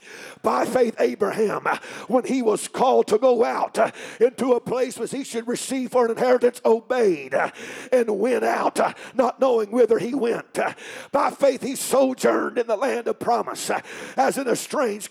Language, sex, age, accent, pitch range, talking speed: English, male, 50-69, American, 255-370 Hz, 165 wpm